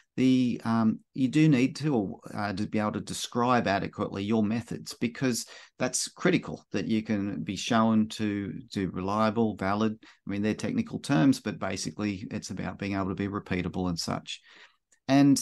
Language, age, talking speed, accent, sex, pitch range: English, 40-59, 170 wpm, Australian, male, 105-130 Hz